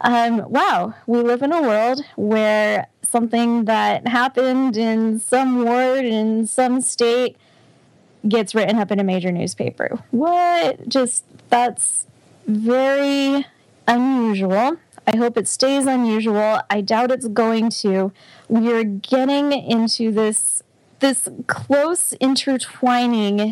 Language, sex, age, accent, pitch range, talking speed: English, female, 10-29, American, 200-245 Hz, 115 wpm